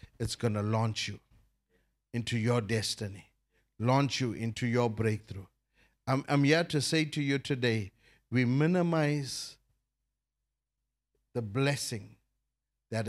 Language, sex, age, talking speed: English, male, 60-79, 120 wpm